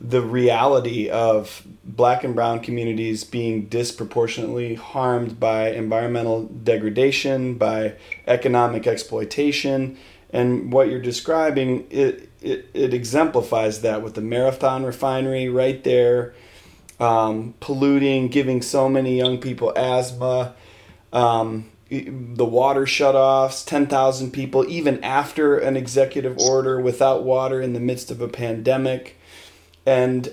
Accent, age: American, 30-49